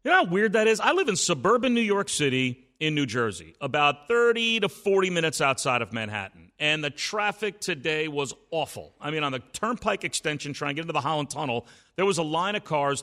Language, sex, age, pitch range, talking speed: English, male, 40-59, 145-210 Hz, 225 wpm